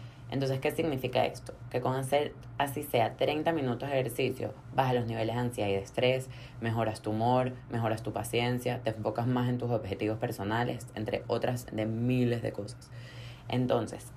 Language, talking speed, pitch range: Spanish, 175 wpm, 115-130 Hz